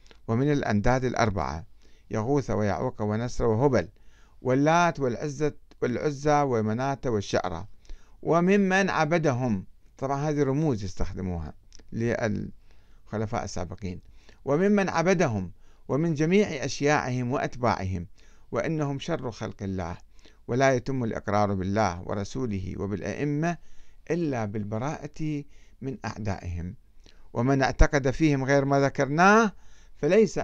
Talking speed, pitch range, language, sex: 95 wpm, 105-150 Hz, Arabic, male